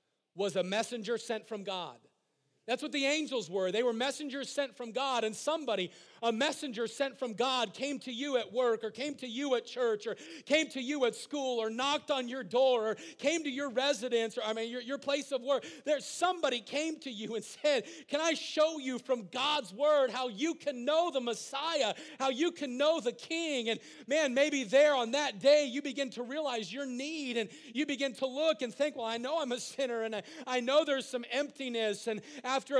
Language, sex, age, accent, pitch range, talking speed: English, male, 40-59, American, 225-285 Hz, 220 wpm